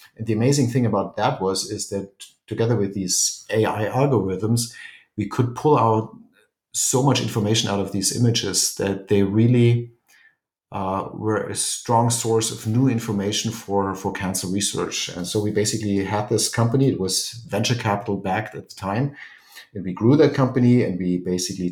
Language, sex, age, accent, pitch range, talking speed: English, male, 50-69, German, 95-120 Hz, 175 wpm